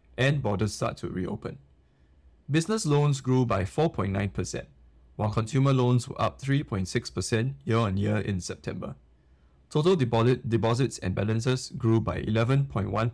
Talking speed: 125 wpm